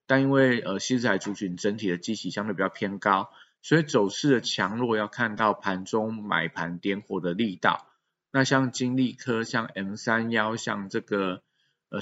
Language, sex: Chinese, male